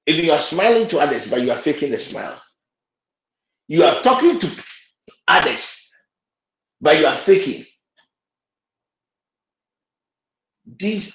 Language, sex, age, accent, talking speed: English, male, 50-69, Nigerian, 120 wpm